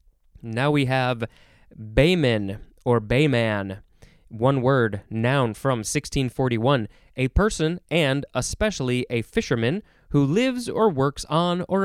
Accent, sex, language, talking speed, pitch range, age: American, male, English, 115 wpm, 115-155 Hz, 20-39